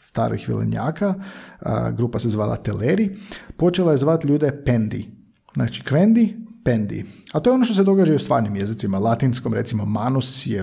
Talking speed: 165 wpm